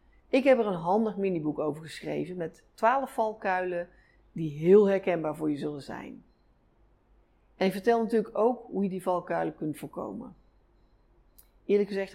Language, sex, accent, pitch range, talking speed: Dutch, female, Dutch, 155-205 Hz, 155 wpm